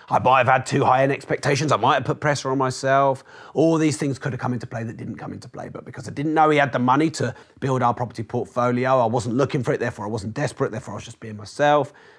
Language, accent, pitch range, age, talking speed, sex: English, British, 120-150 Hz, 30-49, 280 wpm, male